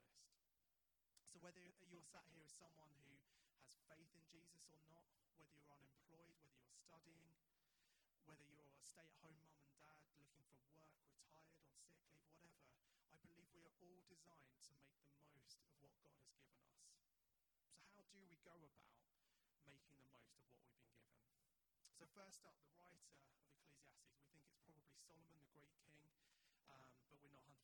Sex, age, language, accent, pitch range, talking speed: male, 30-49, English, British, 140-170 Hz, 205 wpm